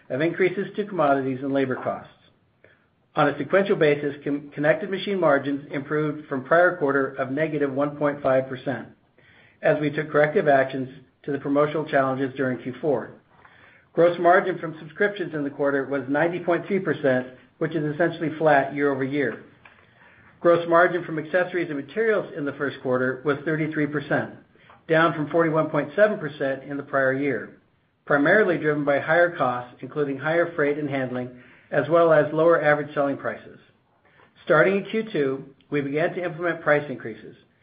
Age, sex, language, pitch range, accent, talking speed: 60-79, male, English, 140-165 Hz, American, 150 wpm